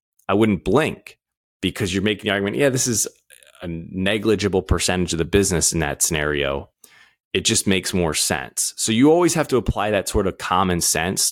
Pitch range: 90-110 Hz